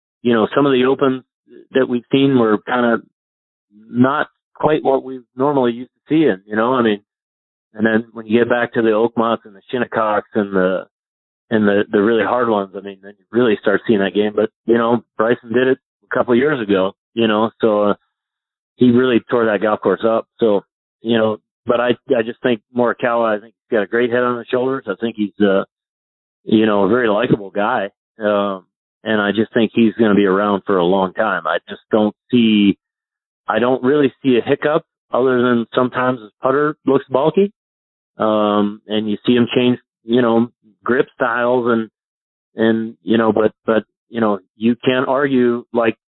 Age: 40-59